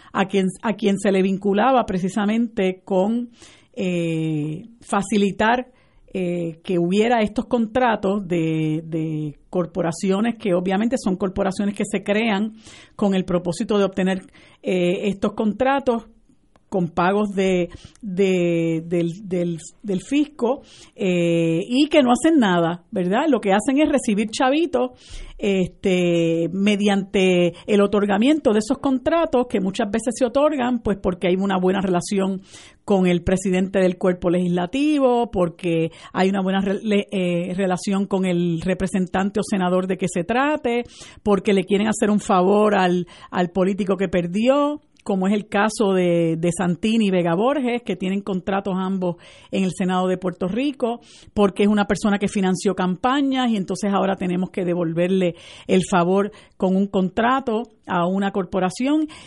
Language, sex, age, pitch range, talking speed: Spanish, female, 50-69, 185-225 Hz, 150 wpm